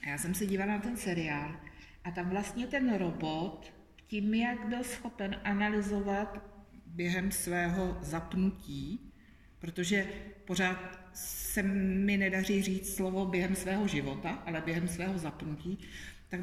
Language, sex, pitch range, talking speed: Czech, female, 175-225 Hz, 130 wpm